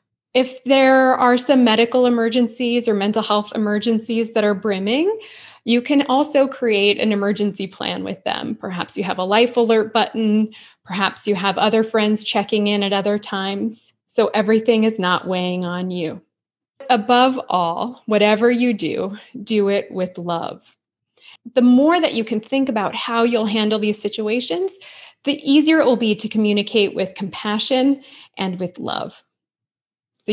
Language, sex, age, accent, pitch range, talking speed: English, female, 20-39, American, 195-240 Hz, 160 wpm